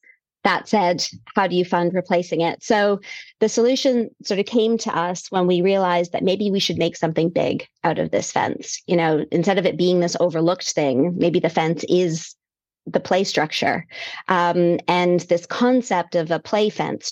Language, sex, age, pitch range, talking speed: English, female, 30-49, 170-200 Hz, 190 wpm